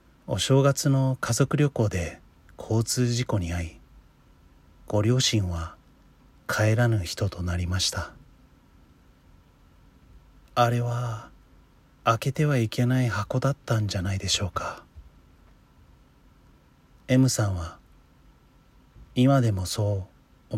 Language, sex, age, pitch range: Japanese, male, 40-59, 85-125 Hz